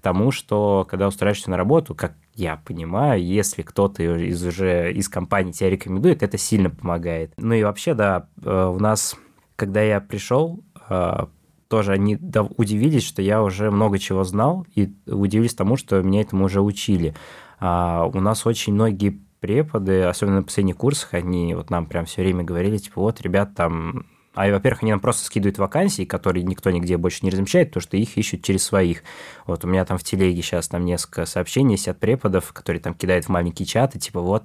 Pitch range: 90-105 Hz